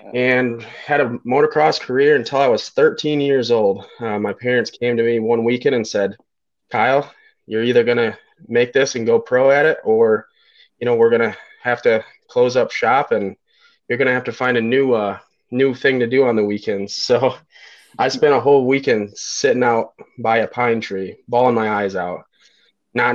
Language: English